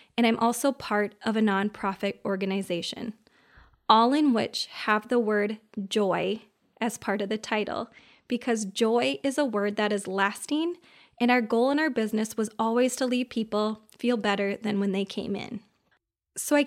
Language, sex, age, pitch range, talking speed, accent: English, female, 20-39, 195-235 Hz, 175 wpm, American